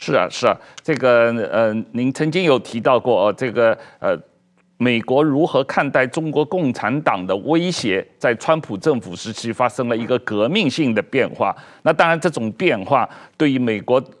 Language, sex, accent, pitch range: Chinese, male, native, 120-165 Hz